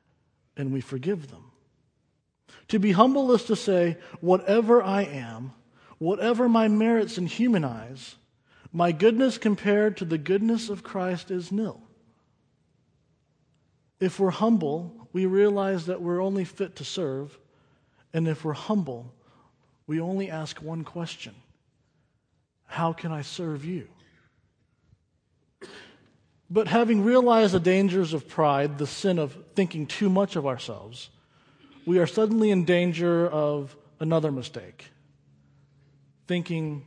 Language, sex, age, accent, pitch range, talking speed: English, male, 40-59, American, 140-195 Hz, 125 wpm